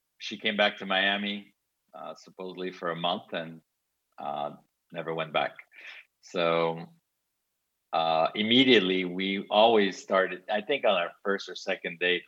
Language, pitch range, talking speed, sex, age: English, 90-110 Hz, 140 wpm, male, 50-69